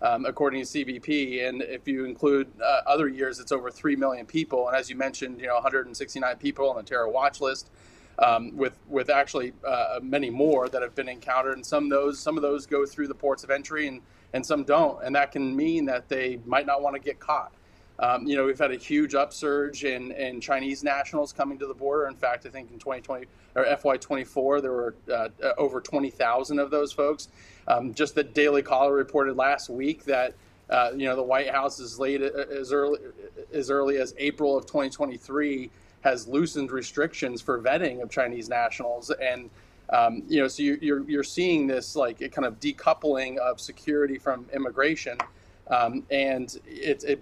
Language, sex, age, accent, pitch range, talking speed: English, male, 30-49, American, 130-145 Hz, 200 wpm